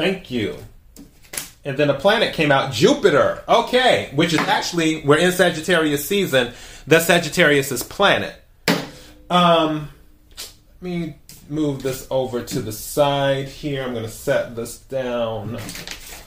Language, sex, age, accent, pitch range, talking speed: English, male, 30-49, American, 125-160 Hz, 135 wpm